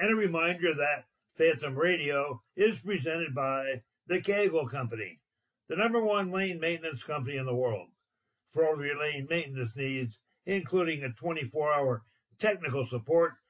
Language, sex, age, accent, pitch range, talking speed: English, male, 60-79, American, 135-185 Hz, 145 wpm